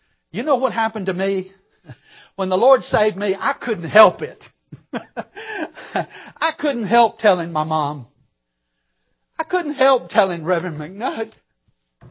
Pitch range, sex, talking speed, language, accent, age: 120-190 Hz, male, 135 wpm, English, American, 60-79